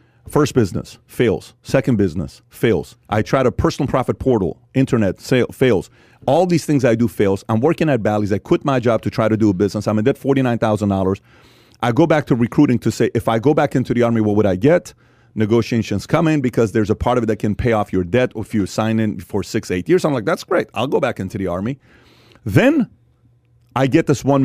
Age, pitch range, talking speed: 30-49, 110-135 Hz, 235 wpm